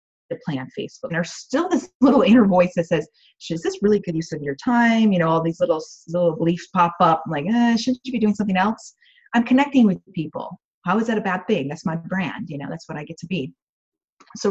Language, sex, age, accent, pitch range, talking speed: English, female, 30-49, American, 175-235 Hz, 250 wpm